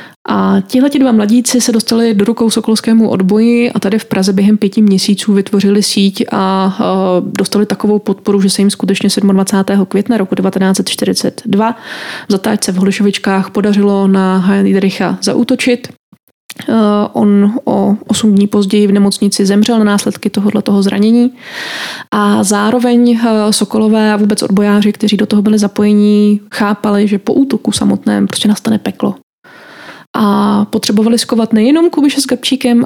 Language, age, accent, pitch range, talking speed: Czech, 20-39, native, 205-225 Hz, 140 wpm